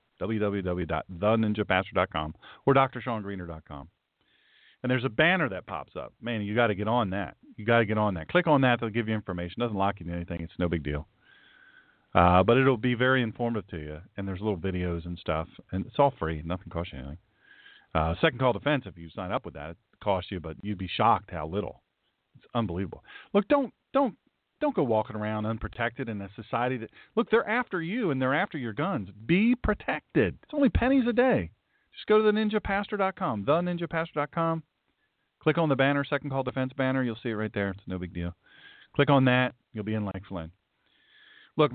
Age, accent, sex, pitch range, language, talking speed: 40-59, American, male, 95-135 Hz, English, 205 wpm